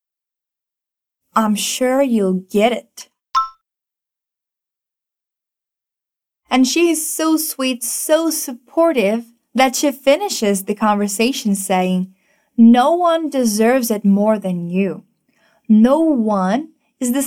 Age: 20-39